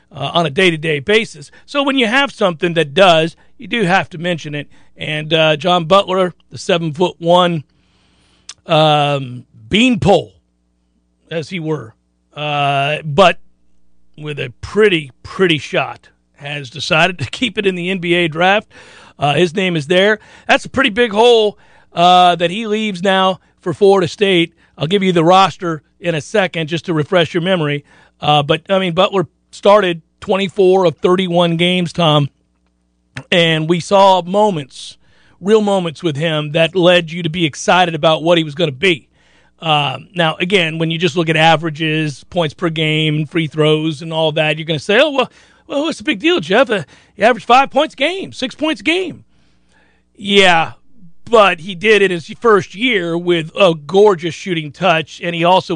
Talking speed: 185 wpm